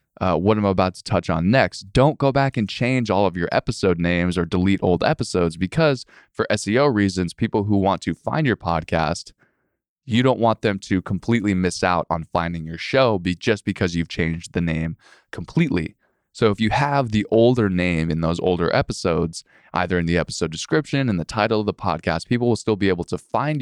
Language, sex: English, male